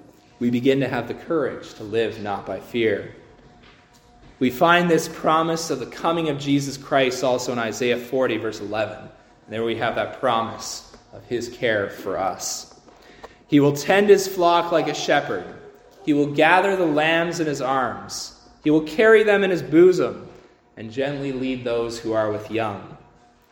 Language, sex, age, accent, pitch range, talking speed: English, male, 20-39, American, 115-155 Hz, 175 wpm